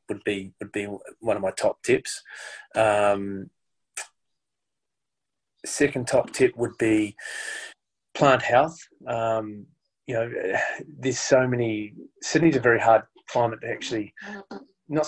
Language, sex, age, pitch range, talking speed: English, male, 20-39, 100-120 Hz, 125 wpm